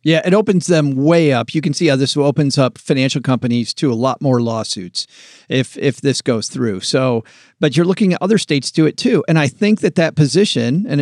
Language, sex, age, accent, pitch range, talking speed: English, male, 40-59, American, 135-175 Hz, 235 wpm